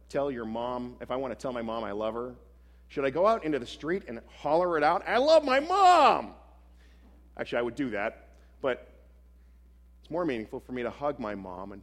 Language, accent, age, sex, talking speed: English, American, 40-59, male, 225 wpm